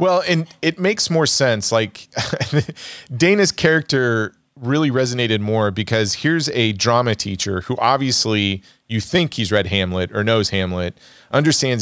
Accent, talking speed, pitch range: American, 140 wpm, 100-125 Hz